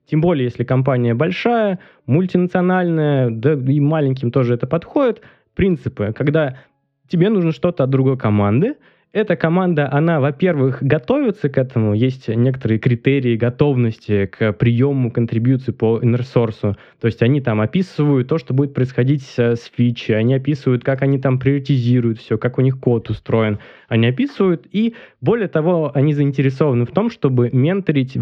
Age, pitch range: 20-39, 125-160 Hz